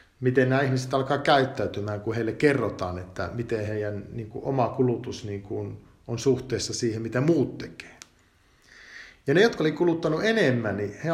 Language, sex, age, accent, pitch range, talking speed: Finnish, male, 50-69, native, 110-175 Hz, 165 wpm